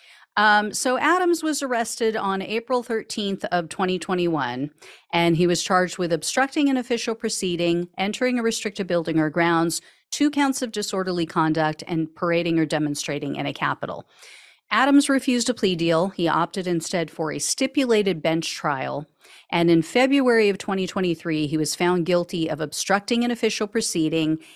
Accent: American